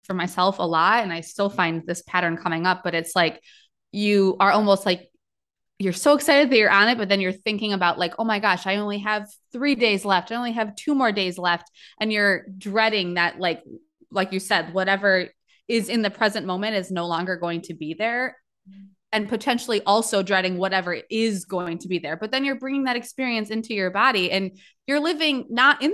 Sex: female